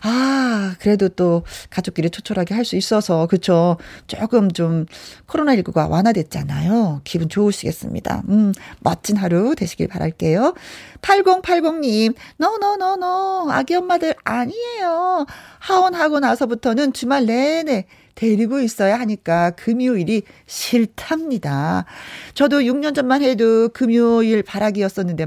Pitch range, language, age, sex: 180-260 Hz, Korean, 40-59, female